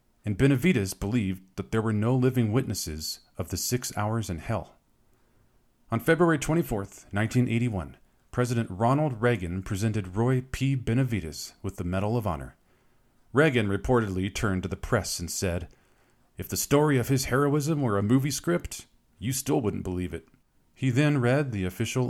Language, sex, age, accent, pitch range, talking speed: English, male, 40-59, American, 95-130 Hz, 160 wpm